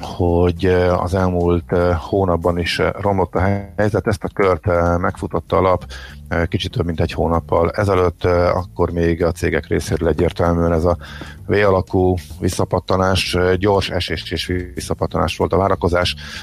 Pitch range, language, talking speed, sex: 80-90 Hz, Hungarian, 135 wpm, male